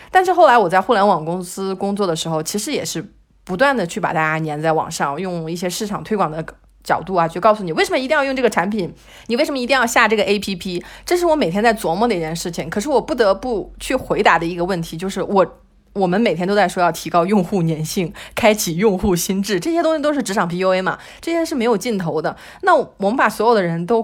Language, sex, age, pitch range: Chinese, female, 30-49, 170-235 Hz